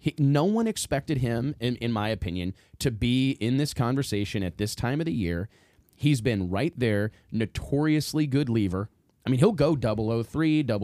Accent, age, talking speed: American, 30-49, 175 wpm